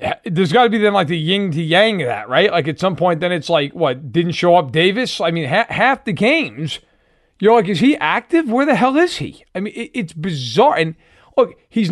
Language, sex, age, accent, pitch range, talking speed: English, male, 40-59, American, 155-215 Hz, 235 wpm